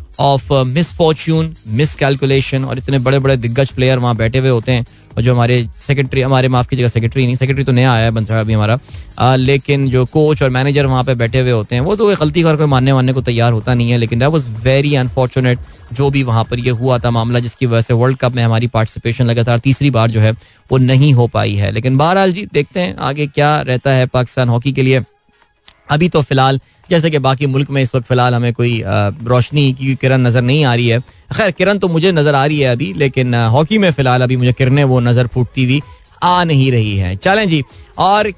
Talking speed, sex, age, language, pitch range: 230 wpm, male, 20-39, Hindi, 125-165 Hz